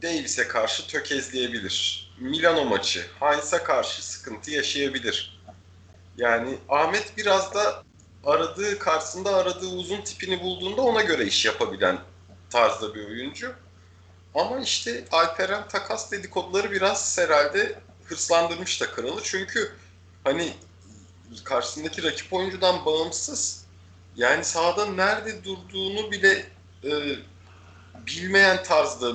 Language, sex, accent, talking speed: Turkish, male, native, 105 wpm